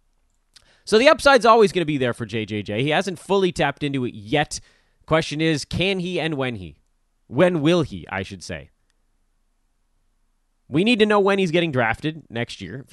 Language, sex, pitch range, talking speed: English, male, 110-155 Hz, 190 wpm